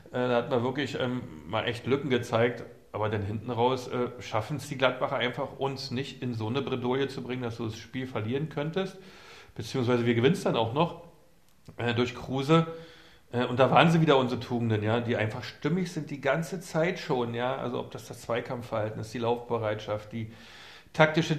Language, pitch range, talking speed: German, 115-150 Hz, 200 wpm